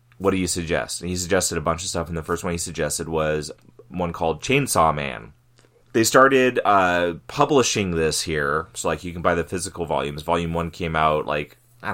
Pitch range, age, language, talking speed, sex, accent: 85-120 Hz, 20-39, English, 210 wpm, male, American